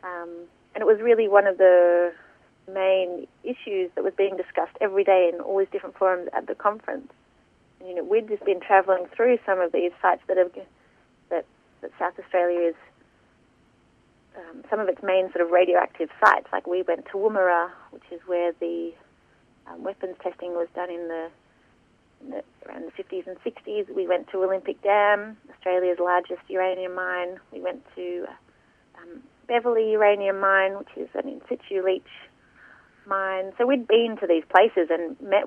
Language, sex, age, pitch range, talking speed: English, female, 30-49, 180-210 Hz, 180 wpm